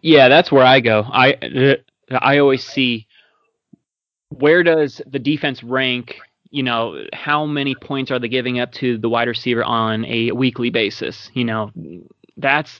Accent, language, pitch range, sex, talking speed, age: American, English, 120-145 Hz, male, 160 wpm, 20-39